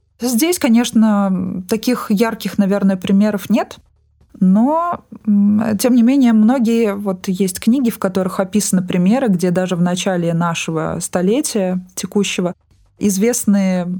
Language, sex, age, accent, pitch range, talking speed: Russian, female, 20-39, native, 175-215 Hz, 115 wpm